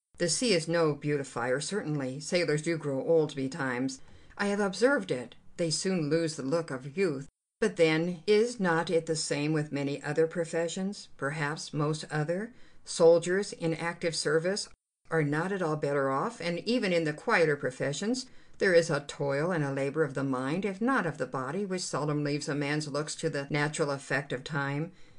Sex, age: female, 60-79